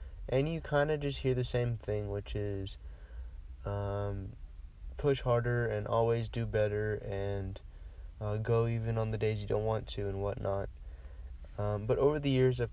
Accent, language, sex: American, English, male